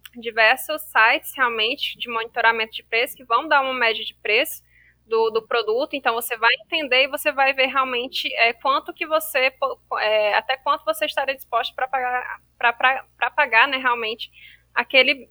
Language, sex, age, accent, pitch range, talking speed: Portuguese, female, 10-29, Brazilian, 230-295 Hz, 165 wpm